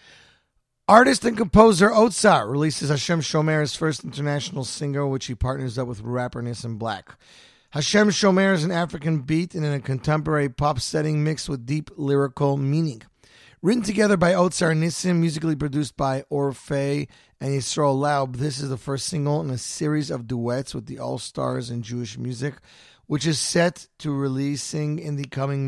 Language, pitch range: English, 135-160 Hz